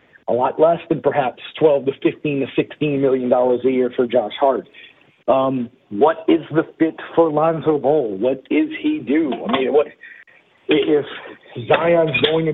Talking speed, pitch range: 170 wpm, 145-170 Hz